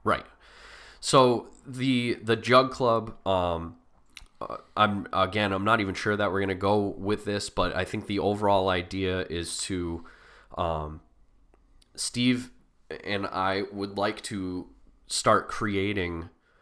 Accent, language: American, English